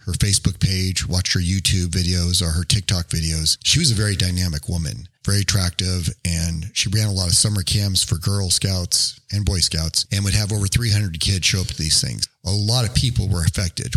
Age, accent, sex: 40-59, American, male